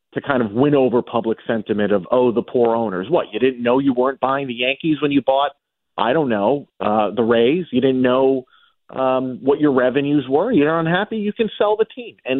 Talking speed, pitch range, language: 225 wpm, 120-170 Hz, English